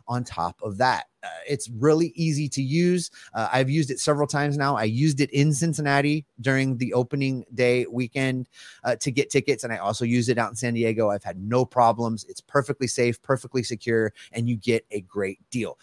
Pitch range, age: 115-155 Hz, 30-49